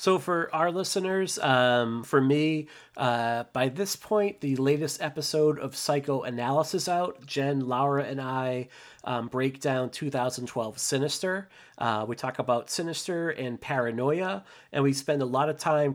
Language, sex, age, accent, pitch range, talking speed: English, male, 30-49, American, 125-150 Hz, 145 wpm